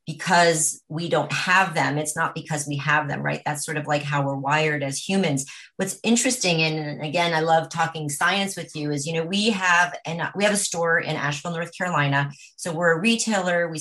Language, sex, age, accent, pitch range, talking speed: English, female, 30-49, American, 155-185 Hz, 215 wpm